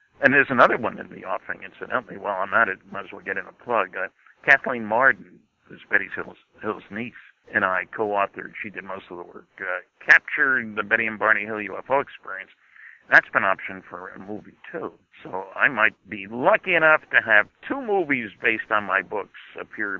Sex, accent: male, American